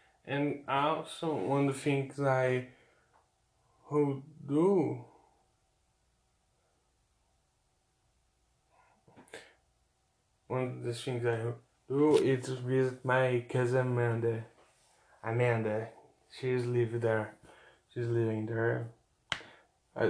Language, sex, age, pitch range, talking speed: Portuguese, male, 20-39, 115-130 Hz, 85 wpm